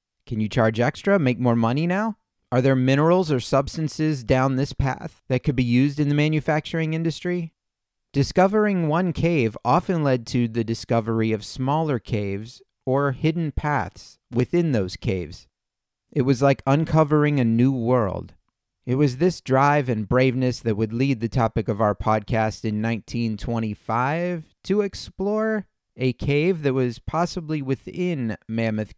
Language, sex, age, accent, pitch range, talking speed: English, male, 30-49, American, 110-150 Hz, 150 wpm